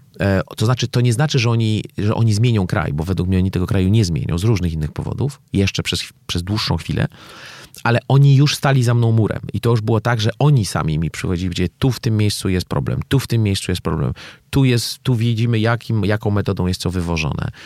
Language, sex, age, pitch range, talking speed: Polish, male, 40-59, 90-120 Hz, 230 wpm